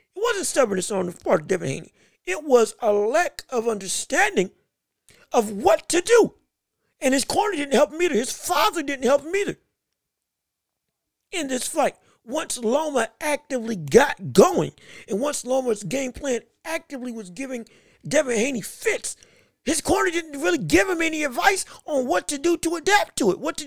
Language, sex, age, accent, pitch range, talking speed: English, male, 50-69, American, 235-325 Hz, 175 wpm